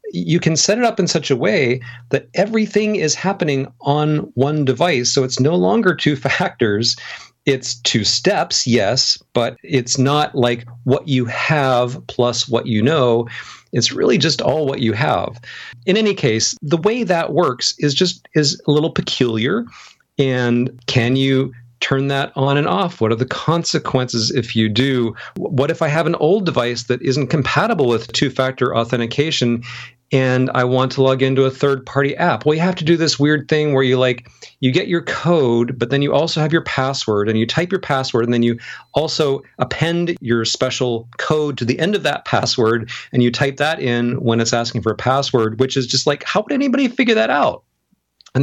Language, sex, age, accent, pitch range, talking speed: English, male, 40-59, American, 120-160 Hz, 195 wpm